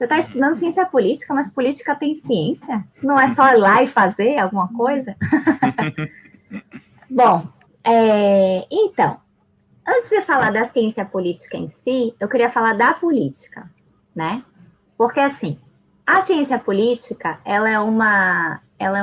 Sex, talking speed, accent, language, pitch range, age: female, 130 wpm, Brazilian, Portuguese, 200-280 Hz, 20-39